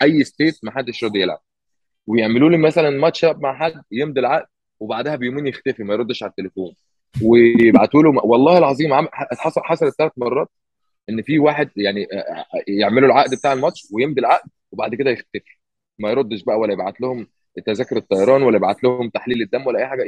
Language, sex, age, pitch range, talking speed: Arabic, male, 20-39, 110-150 Hz, 175 wpm